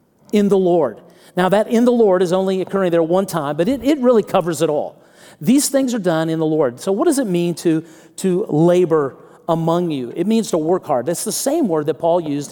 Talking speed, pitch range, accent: 240 wpm, 155-215 Hz, American